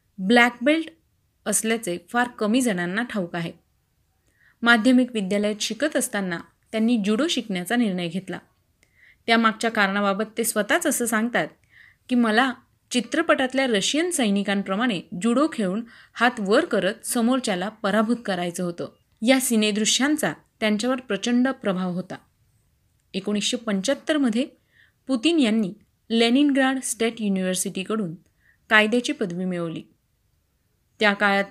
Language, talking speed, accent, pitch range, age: Marathi, 105 wpm, native, 200-255 Hz, 30-49